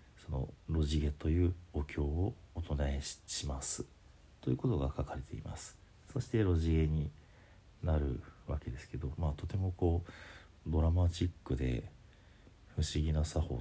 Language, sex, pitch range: Japanese, male, 75-90 Hz